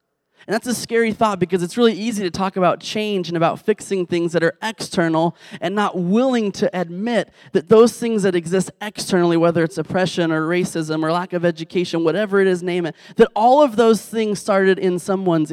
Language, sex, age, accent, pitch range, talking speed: English, male, 20-39, American, 165-205 Hz, 205 wpm